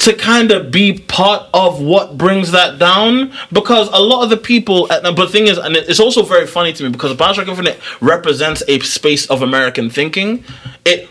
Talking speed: 210 wpm